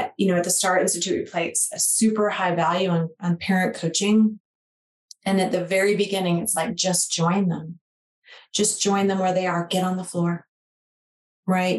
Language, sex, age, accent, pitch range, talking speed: English, female, 30-49, American, 175-205 Hz, 190 wpm